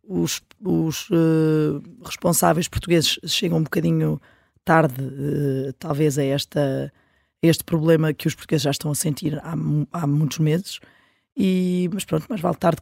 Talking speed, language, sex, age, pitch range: 155 wpm, Portuguese, female, 20-39, 145-180 Hz